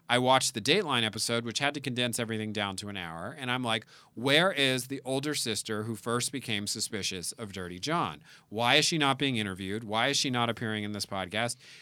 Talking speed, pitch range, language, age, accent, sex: 220 wpm, 110-140 Hz, English, 40-59, American, male